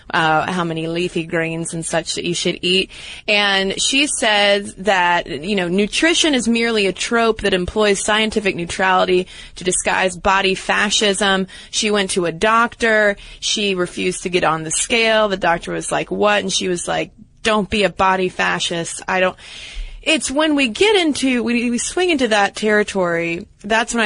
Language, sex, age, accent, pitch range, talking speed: English, female, 20-39, American, 180-215 Hz, 175 wpm